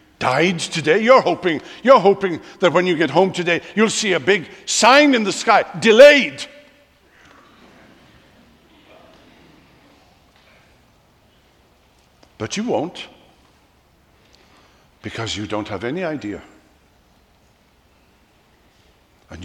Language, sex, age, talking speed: English, male, 60-79, 95 wpm